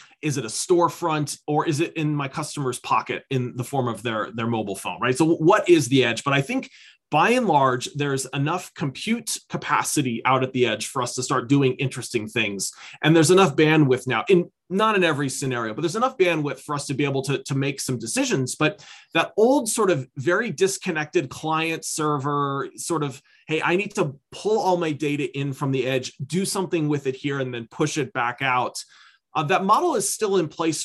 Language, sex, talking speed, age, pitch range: English, male, 215 wpm, 30-49, 130-175 Hz